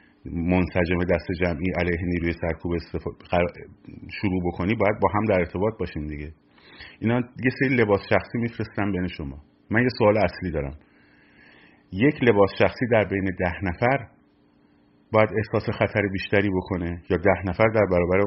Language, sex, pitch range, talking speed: Persian, male, 85-115 Hz, 150 wpm